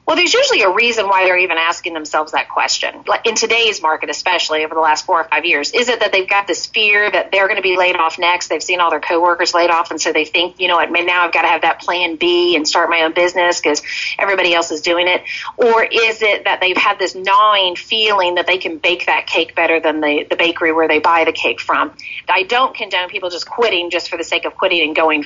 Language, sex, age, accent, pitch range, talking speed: English, female, 40-59, American, 165-230 Hz, 260 wpm